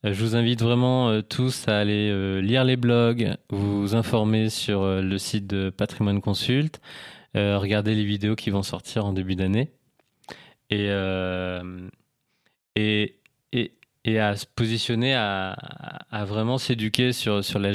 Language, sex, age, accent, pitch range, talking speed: English, male, 20-39, French, 100-115 Hz, 155 wpm